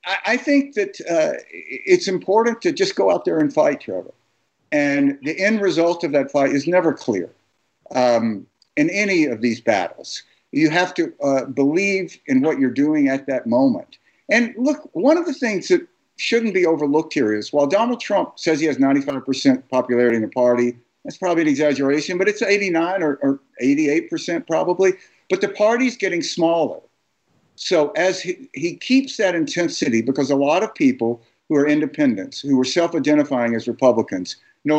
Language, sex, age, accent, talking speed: English, male, 50-69, American, 180 wpm